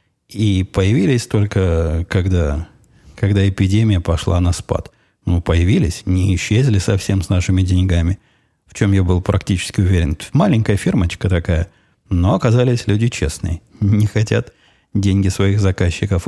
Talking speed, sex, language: 130 wpm, male, Russian